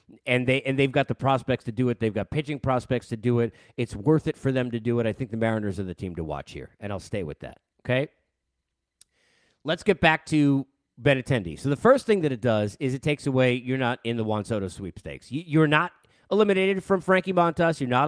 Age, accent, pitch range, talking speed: 40-59, American, 115-150 Hz, 250 wpm